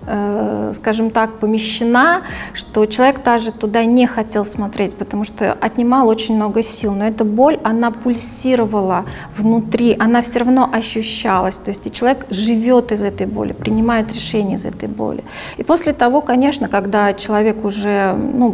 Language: Russian